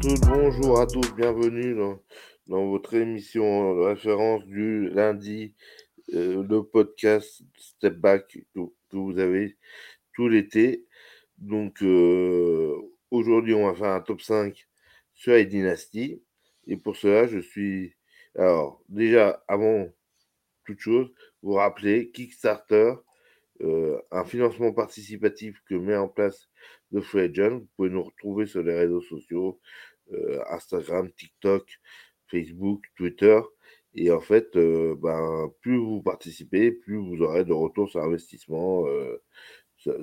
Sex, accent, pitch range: male, French, 90-115 Hz